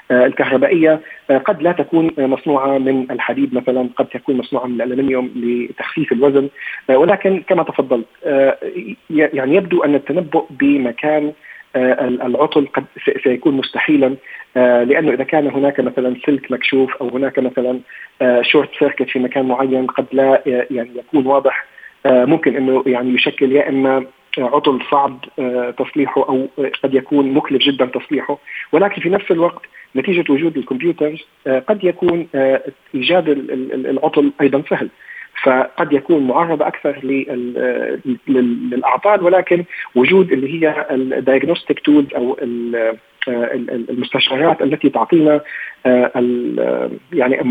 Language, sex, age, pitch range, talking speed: Arabic, male, 40-59, 130-150 Hz, 115 wpm